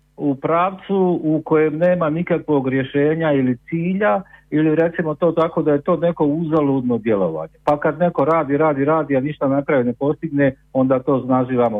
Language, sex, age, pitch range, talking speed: Croatian, male, 50-69, 130-165 Hz, 170 wpm